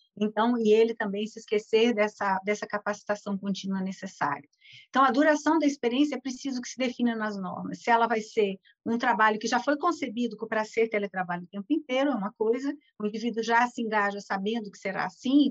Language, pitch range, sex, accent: Portuguese, 205-255 Hz, female, Brazilian